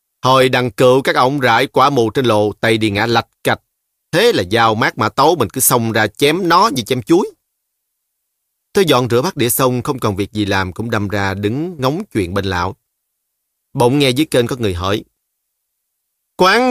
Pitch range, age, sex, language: 105-150 Hz, 30-49, male, Vietnamese